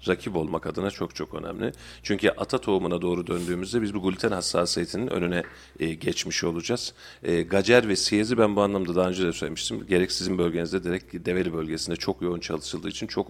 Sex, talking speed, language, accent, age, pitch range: male, 180 wpm, Turkish, native, 40-59, 85-100 Hz